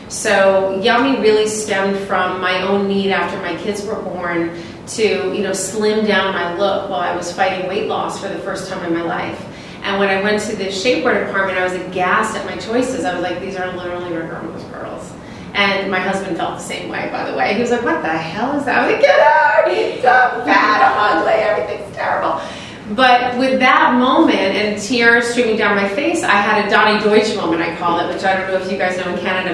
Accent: American